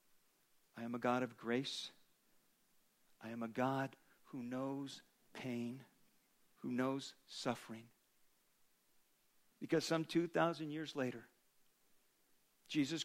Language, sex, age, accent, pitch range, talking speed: English, male, 50-69, American, 125-160 Hz, 100 wpm